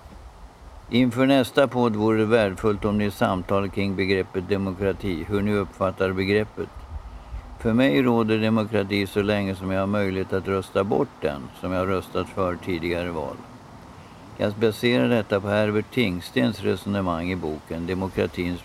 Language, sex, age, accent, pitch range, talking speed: Swedish, male, 60-79, native, 90-110 Hz, 150 wpm